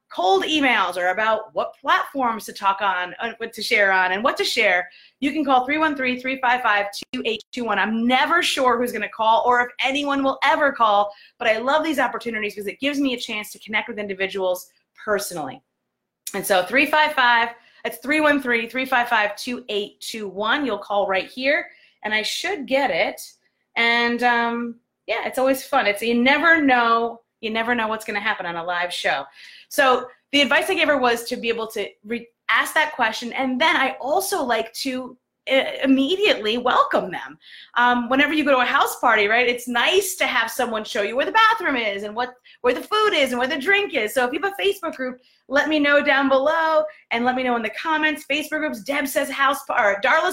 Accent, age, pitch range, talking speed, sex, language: American, 30-49, 230-300 Hz, 200 wpm, female, English